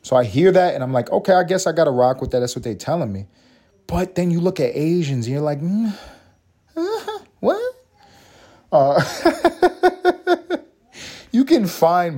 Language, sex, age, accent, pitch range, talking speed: English, male, 30-49, American, 100-160 Hz, 180 wpm